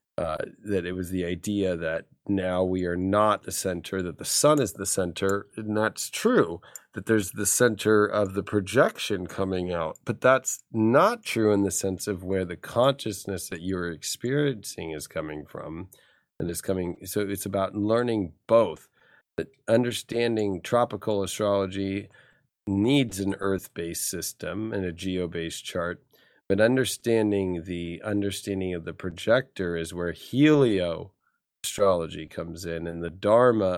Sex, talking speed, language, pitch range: male, 150 wpm, English, 85-105 Hz